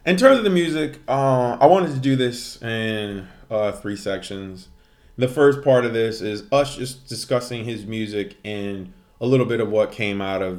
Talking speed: 200 wpm